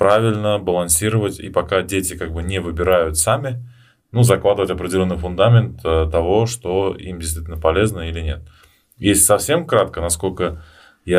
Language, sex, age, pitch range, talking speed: Russian, male, 20-39, 80-105 Hz, 140 wpm